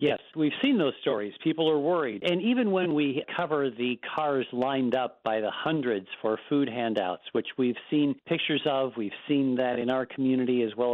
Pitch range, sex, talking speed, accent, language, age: 115-135 Hz, male, 215 wpm, American, English, 50-69